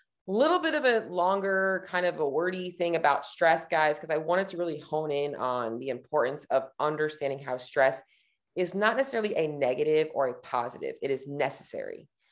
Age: 30-49